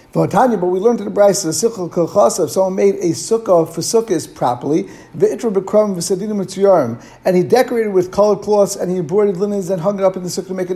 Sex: male